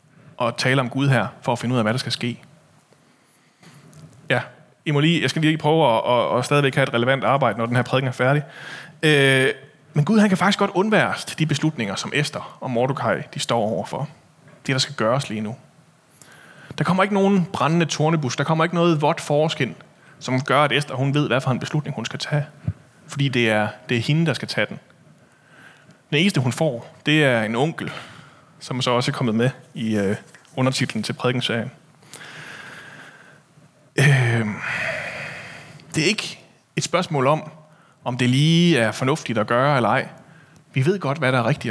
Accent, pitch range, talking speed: native, 125-155 Hz, 195 wpm